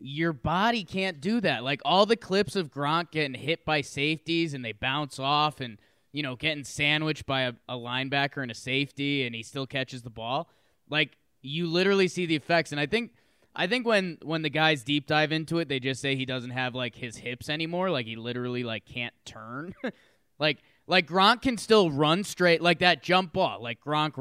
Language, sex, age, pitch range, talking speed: English, male, 20-39, 130-180 Hz, 210 wpm